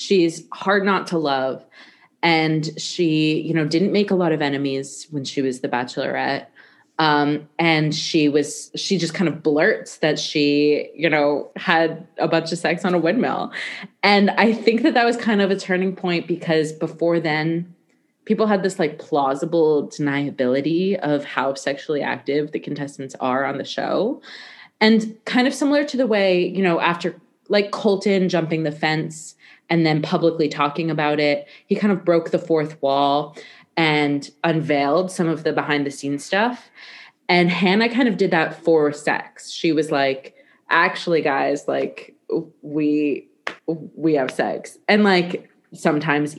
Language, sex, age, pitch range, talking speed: English, female, 20-39, 150-185 Hz, 165 wpm